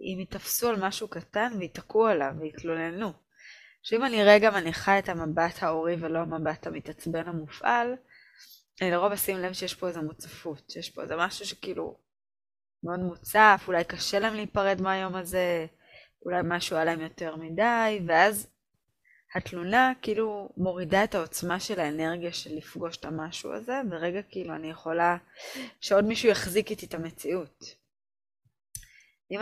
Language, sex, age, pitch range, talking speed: Hebrew, female, 20-39, 165-215 Hz, 145 wpm